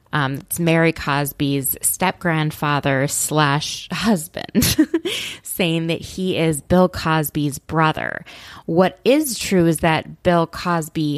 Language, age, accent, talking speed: English, 20-39, American, 115 wpm